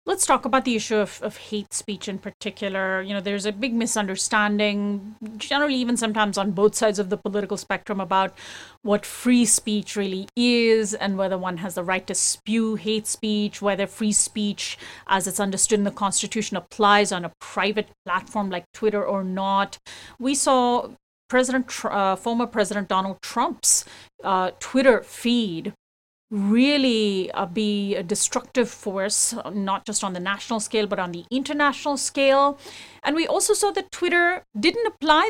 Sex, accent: female, Indian